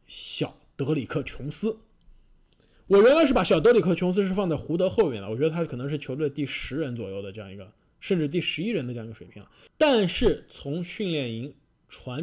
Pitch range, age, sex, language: 125-175 Hz, 20-39, male, Chinese